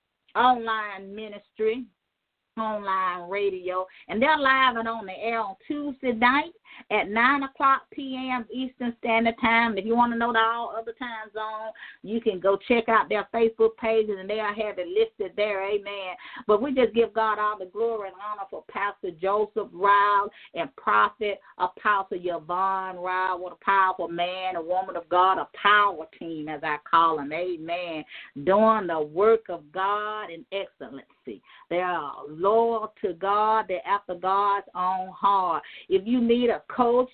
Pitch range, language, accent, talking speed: 180-225 Hz, English, American, 165 wpm